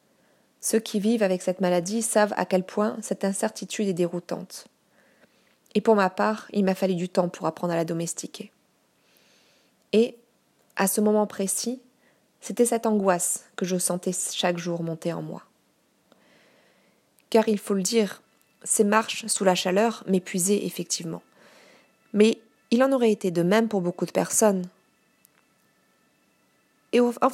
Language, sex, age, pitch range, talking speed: French, female, 20-39, 185-220 Hz, 150 wpm